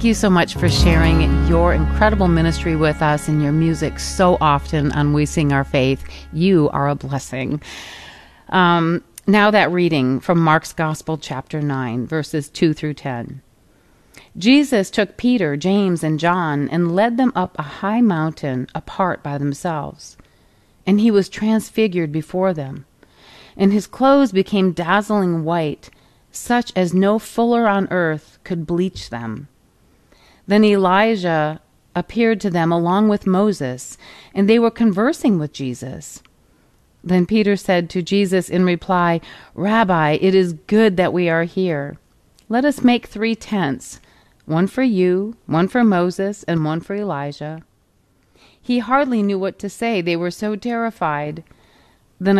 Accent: American